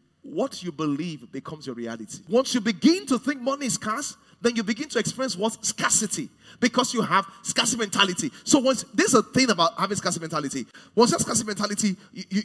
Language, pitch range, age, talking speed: English, 195-270 Hz, 30-49, 200 wpm